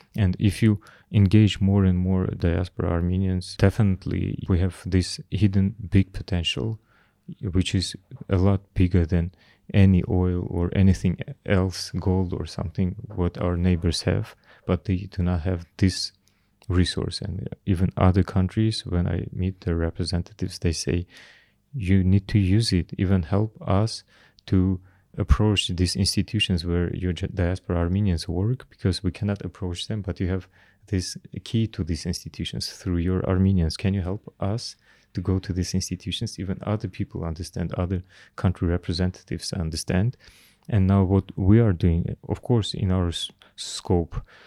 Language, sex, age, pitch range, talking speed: English, male, 30-49, 90-100 Hz, 150 wpm